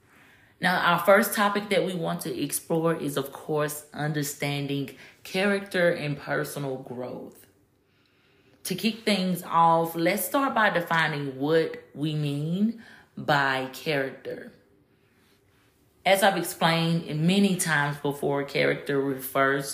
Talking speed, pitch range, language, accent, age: 115 wpm, 140-175 Hz, English, American, 30-49